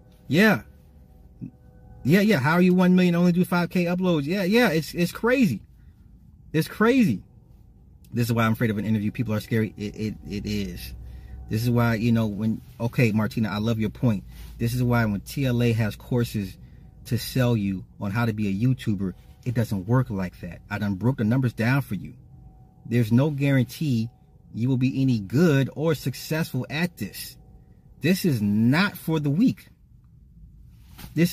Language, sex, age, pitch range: English, male, 30-49, 110-170 Hz